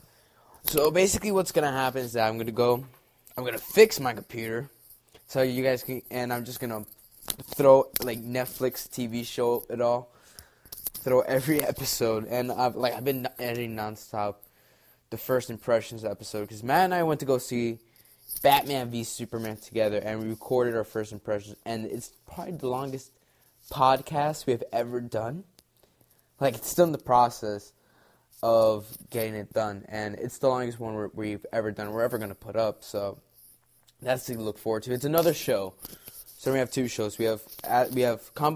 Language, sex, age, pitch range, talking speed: English, male, 10-29, 110-130 Hz, 180 wpm